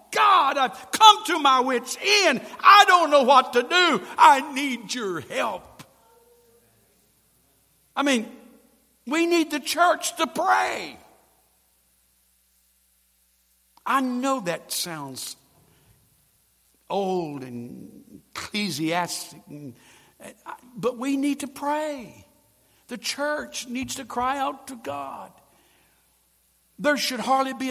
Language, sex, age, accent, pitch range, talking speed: English, male, 60-79, American, 160-270 Hz, 105 wpm